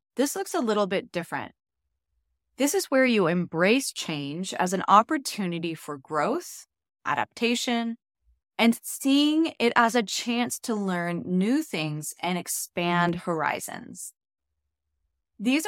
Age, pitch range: 20-39, 150-230 Hz